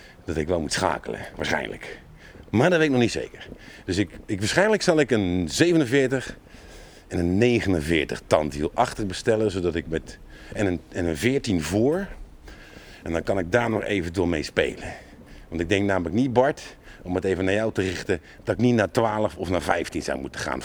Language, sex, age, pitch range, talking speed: Dutch, male, 50-69, 80-110 Hz, 200 wpm